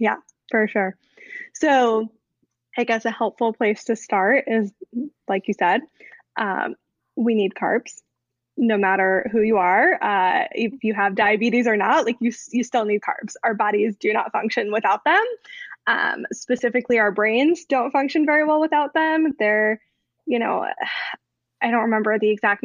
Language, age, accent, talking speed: English, 20-39, American, 165 wpm